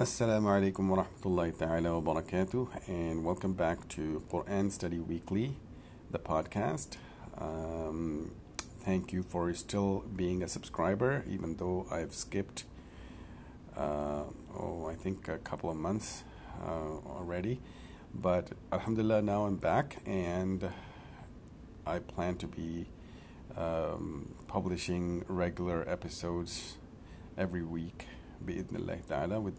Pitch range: 85-100 Hz